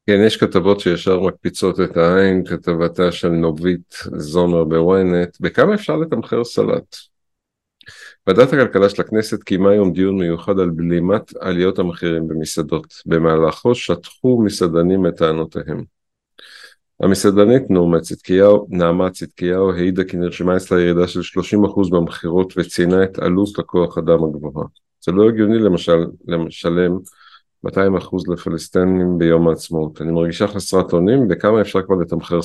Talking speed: 130 wpm